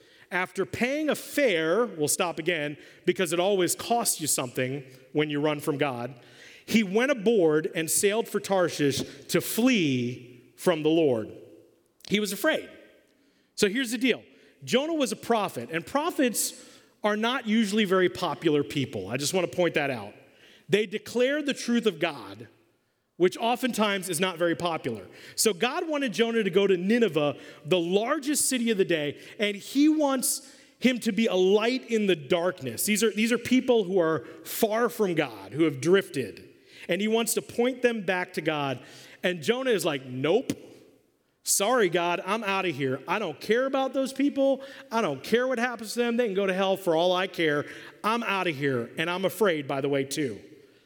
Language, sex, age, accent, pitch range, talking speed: English, male, 40-59, American, 155-235 Hz, 190 wpm